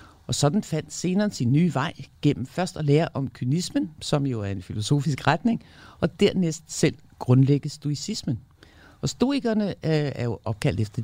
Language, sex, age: Danish, male, 50-69